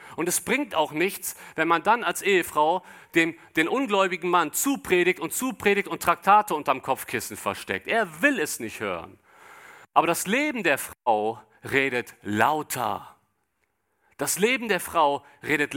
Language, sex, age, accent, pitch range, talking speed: German, male, 50-69, German, 145-200 Hz, 150 wpm